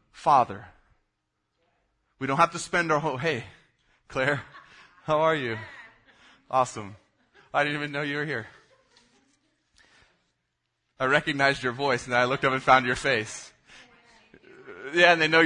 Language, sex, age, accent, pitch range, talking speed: English, male, 20-39, American, 110-140 Hz, 150 wpm